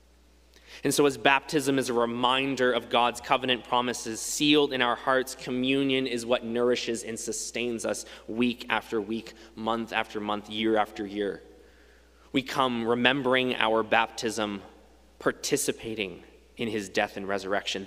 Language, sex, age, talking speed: English, male, 20-39, 140 wpm